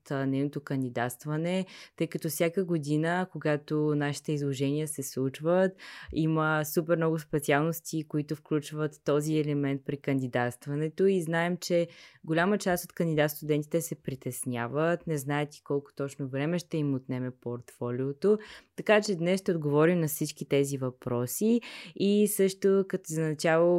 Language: Bulgarian